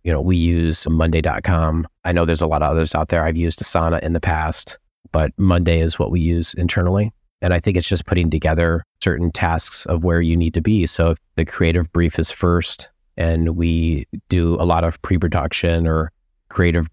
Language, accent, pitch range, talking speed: English, American, 80-90 Hz, 205 wpm